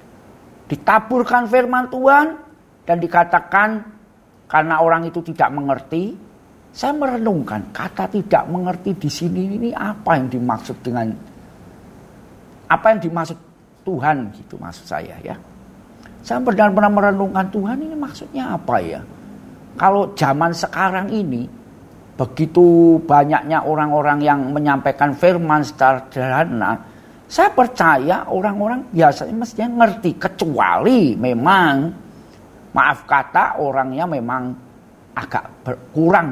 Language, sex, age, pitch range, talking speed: Indonesian, male, 50-69, 145-215 Hz, 105 wpm